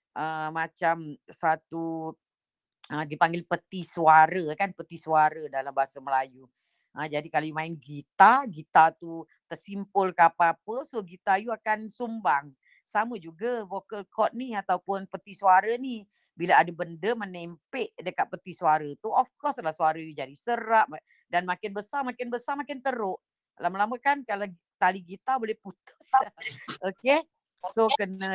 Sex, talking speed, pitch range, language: female, 145 wpm, 160-215 Hz, Indonesian